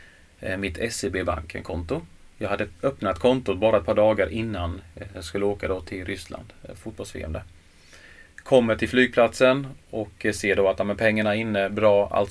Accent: native